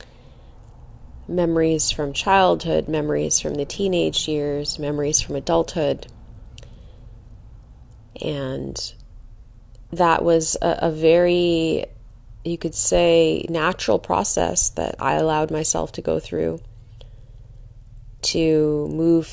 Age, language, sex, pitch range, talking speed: 30-49, English, female, 115-165 Hz, 95 wpm